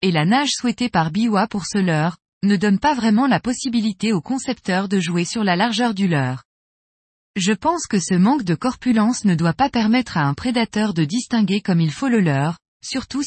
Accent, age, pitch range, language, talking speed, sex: French, 20-39, 180-245 Hz, French, 210 wpm, female